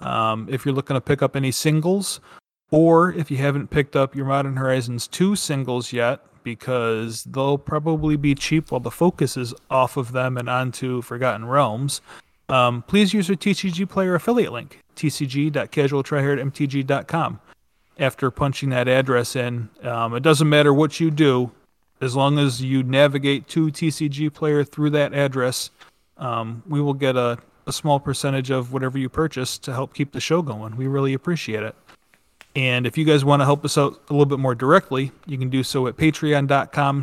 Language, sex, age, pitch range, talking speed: English, male, 30-49, 125-145 Hz, 180 wpm